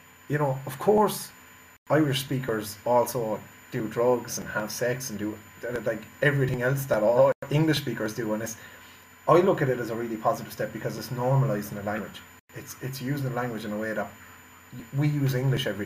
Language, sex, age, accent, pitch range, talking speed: English, male, 30-49, Irish, 110-135 Hz, 195 wpm